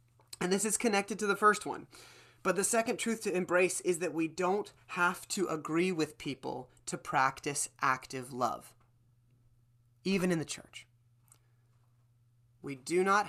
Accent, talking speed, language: American, 155 wpm, English